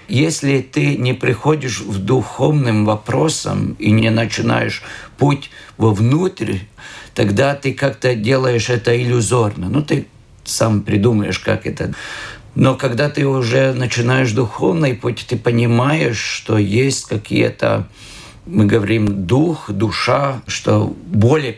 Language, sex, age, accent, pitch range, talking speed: Russian, male, 50-69, native, 110-140 Hz, 115 wpm